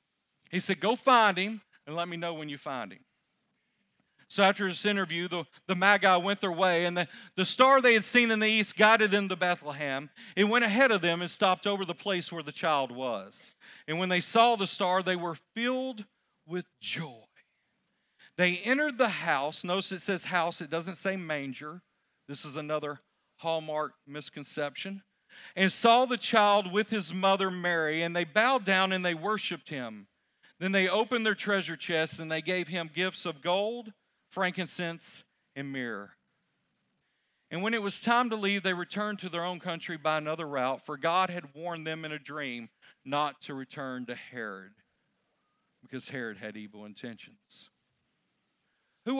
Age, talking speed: 40-59, 180 wpm